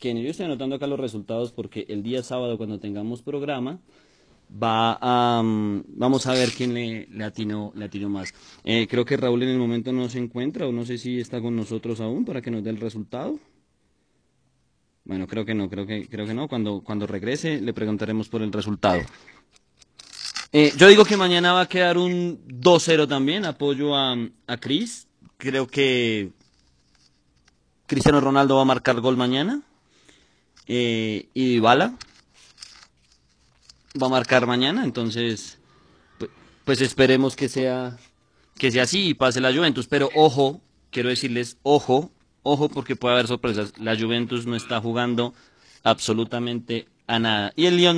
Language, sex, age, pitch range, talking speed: Spanish, male, 20-39, 110-140 Hz, 165 wpm